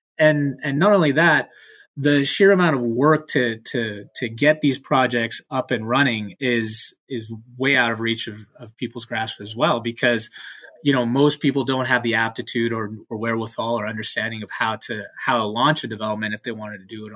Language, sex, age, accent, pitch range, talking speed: English, male, 20-39, American, 110-140 Hz, 205 wpm